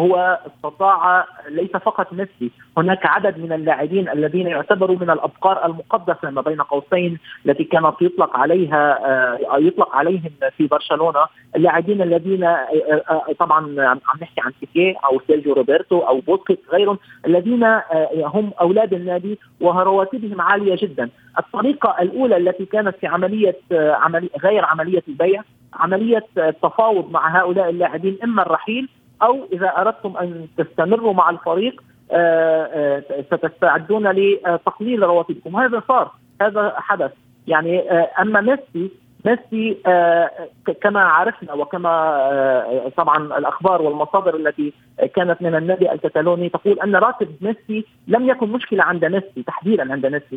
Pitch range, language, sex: 155-195 Hz, Arabic, male